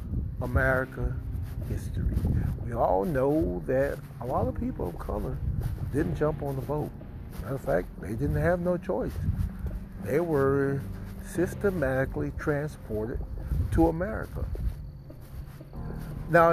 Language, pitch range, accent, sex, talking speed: English, 95-145 Hz, American, male, 115 wpm